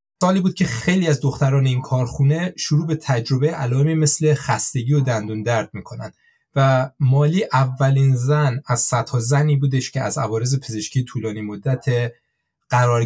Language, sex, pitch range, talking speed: Persian, male, 125-150 Hz, 150 wpm